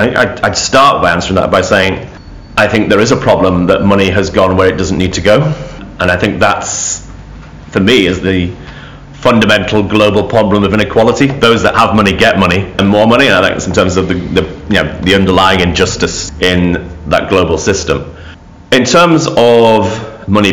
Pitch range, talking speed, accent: 90-105 Hz, 195 wpm, British